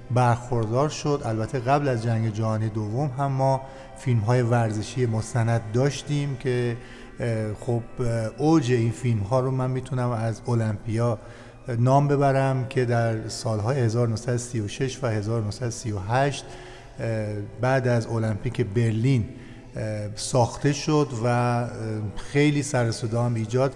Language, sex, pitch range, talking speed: Persian, male, 115-135 Hz, 115 wpm